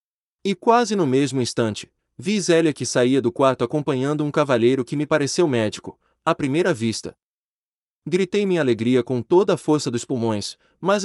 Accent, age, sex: Brazilian, 30-49, male